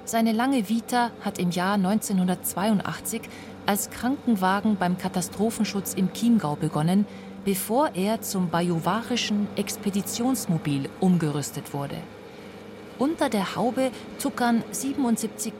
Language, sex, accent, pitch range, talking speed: German, female, German, 180-235 Hz, 100 wpm